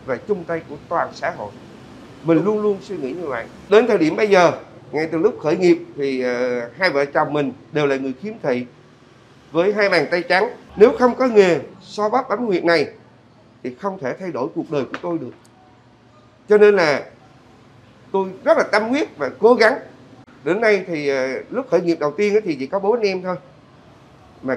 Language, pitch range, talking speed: Vietnamese, 130-195 Hz, 210 wpm